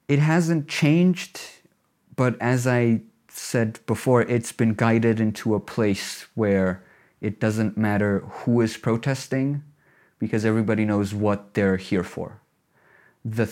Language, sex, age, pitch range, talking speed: Finnish, male, 30-49, 105-130 Hz, 130 wpm